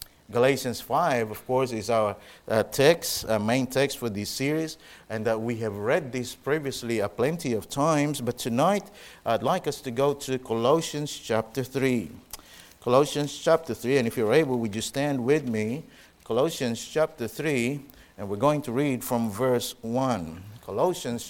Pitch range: 115-150 Hz